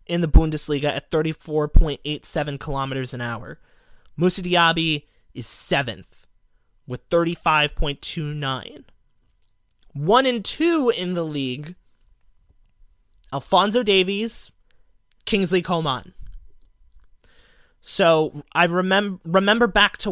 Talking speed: 105 wpm